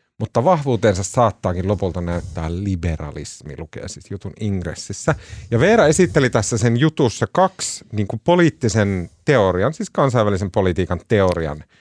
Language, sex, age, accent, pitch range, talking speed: Finnish, male, 30-49, native, 95-130 Hz, 125 wpm